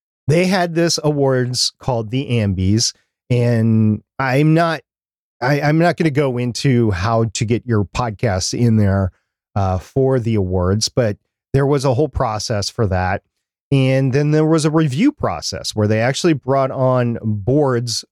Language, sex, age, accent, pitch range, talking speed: English, male, 40-59, American, 110-135 Hz, 160 wpm